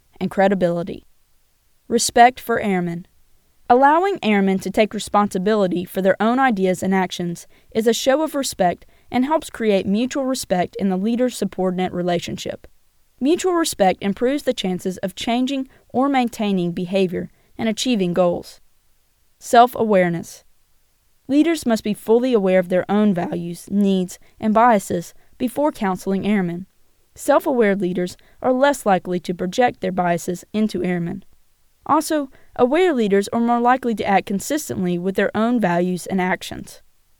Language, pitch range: English, 185-245 Hz